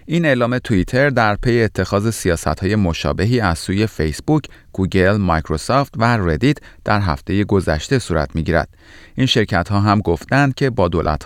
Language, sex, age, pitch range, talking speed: Persian, male, 30-49, 85-115 Hz, 155 wpm